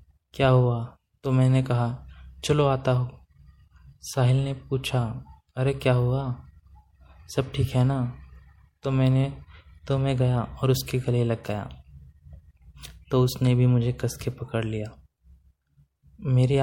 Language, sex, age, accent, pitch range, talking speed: Hindi, male, 20-39, native, 80-125 Hz, 130 wpm